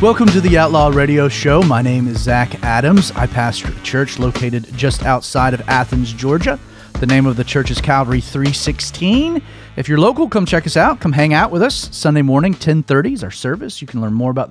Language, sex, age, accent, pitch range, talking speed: English, male, 30-49, American, 120-170 Hz, 215 wpm